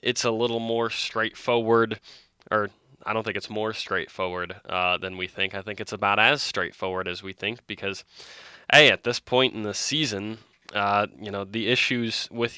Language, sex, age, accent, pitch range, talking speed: English, male, 20-39, American, 100-120 Hz, 185 wpm